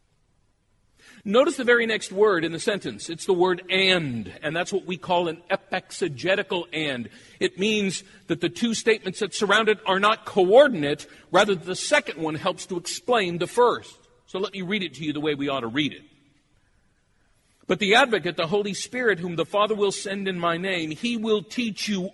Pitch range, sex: 145-220 Hz, male